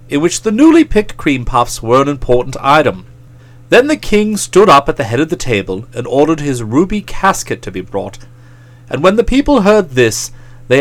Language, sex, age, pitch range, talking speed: English, male, 40-59, 120-175 Hz, 205 wpm